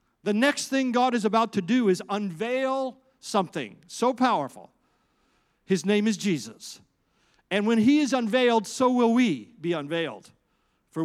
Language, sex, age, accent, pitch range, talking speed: English, male, 50-69, American, 165-230 Hz, 150 wpm